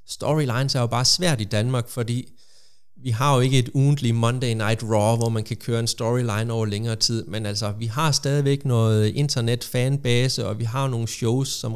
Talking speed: 200 wpm